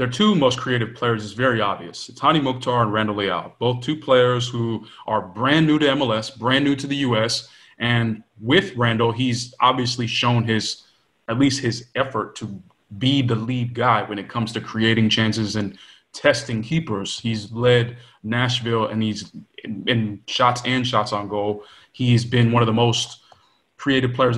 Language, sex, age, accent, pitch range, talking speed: English, male, 20-39, American, 110-130 Hz, 180 wpm